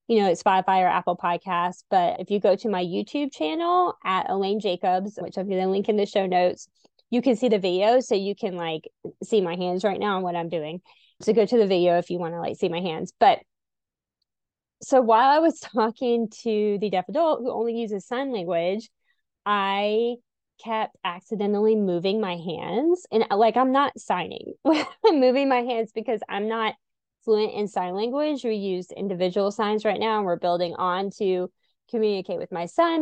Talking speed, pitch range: 200 wpm, 180-235 Hz